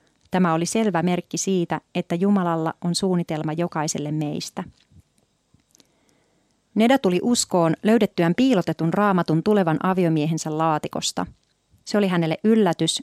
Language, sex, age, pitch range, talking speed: Finnish, female, 30-49, 160-195 Hz, 110 wpm